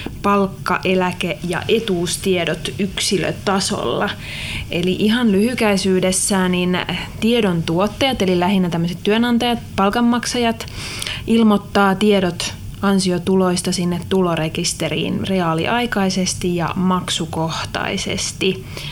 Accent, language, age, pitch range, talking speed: native, Finnish, 30-49, 180-210 Hz, 75 wpm